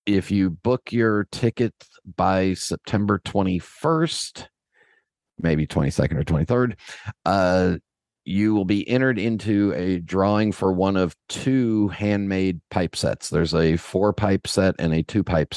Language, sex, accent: English, male, American